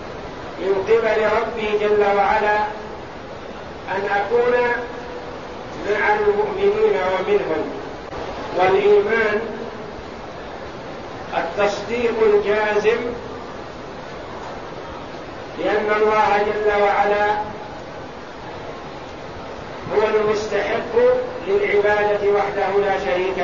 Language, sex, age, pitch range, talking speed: Arabic, male, 50-69, 200-225 Hz, 60 wpm